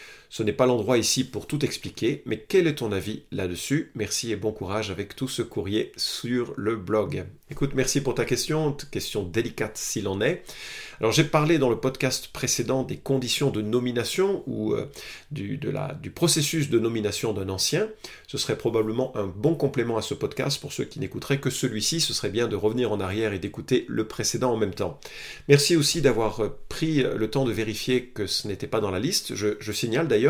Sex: male